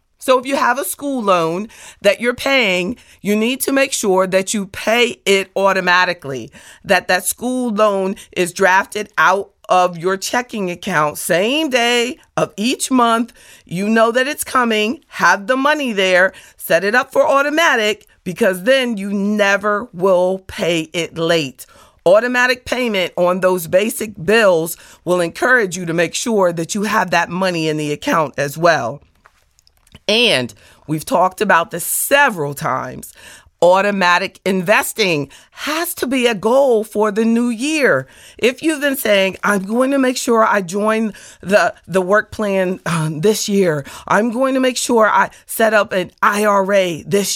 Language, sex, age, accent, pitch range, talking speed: English, female, 40-59, American, 180-235 Hz, 160 wpm